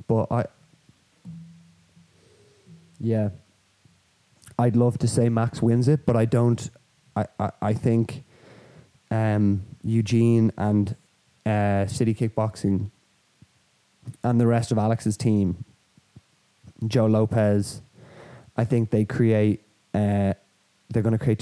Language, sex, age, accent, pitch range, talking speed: English, male, 20-39, Irish, 105-120 Hz, 110 wpm